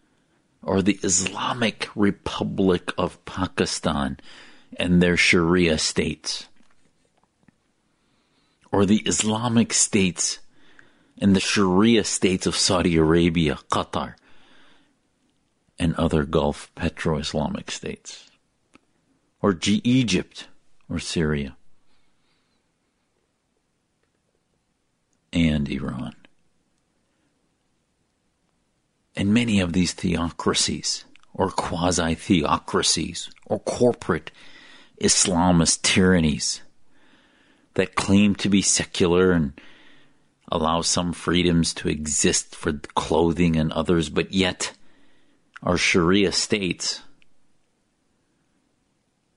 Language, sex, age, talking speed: English, male, 50-69, 80 wpm